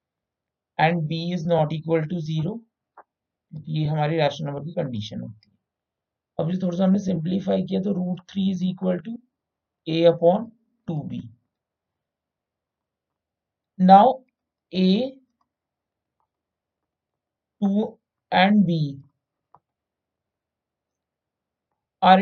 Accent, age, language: native, 50-69, Hindi